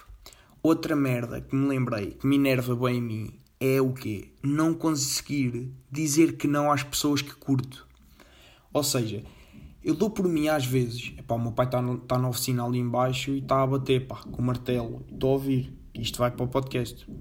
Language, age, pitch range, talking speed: Portuguese, 20-39, 125-155 Hz, 200 wpm